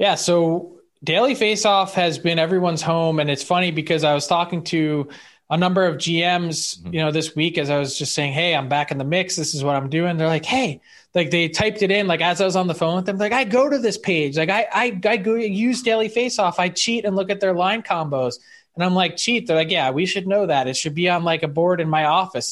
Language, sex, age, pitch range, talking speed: English, male, 20-39, 160-195 Hz, 265 wpm